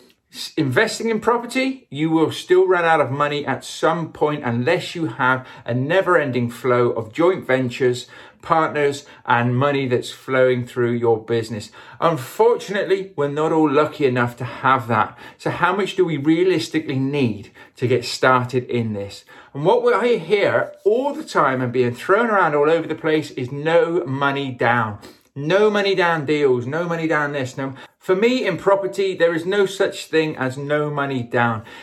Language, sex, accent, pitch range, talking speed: English, male, British, 130-180 Hz, 175 wpm